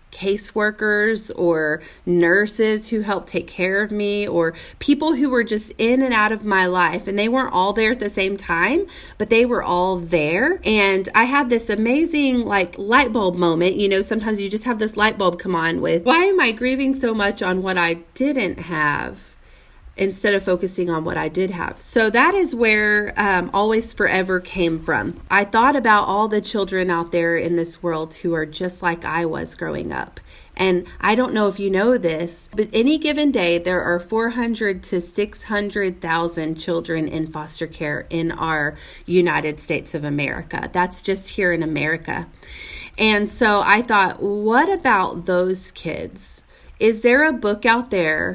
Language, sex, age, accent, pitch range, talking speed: English, female, 30-49, American, 175-220 Hz, 185 wpm